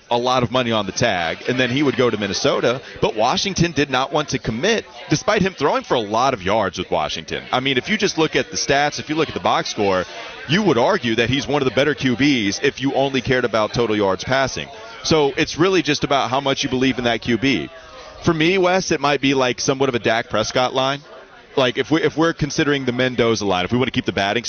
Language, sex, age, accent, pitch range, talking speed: English, male, 30-49, American, 115-140 Hz, 260 wpm